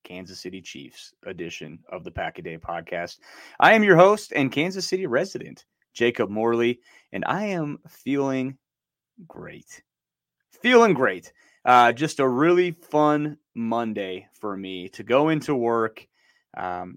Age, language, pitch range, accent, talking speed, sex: 30-49, English, 105-150 Hz, American, 140 wpm, male